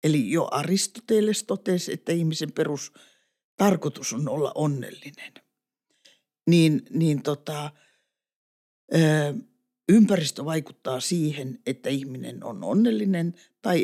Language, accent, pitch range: Finnish, native, 150-195 Hz